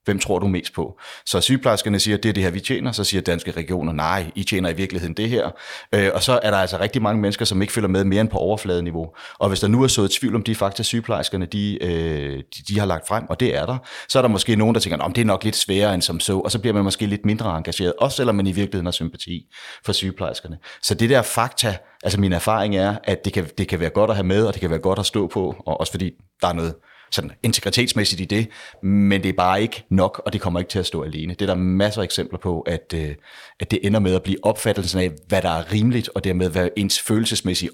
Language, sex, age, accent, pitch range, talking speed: Danish, male, 30-49, native, 90-110 Hz, 275 wpm